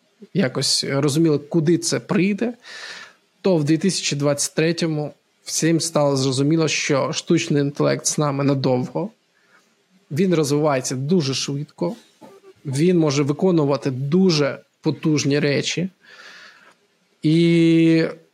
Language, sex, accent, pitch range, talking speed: Ukrainian, male, native, 145-185 Hz, 90 wpm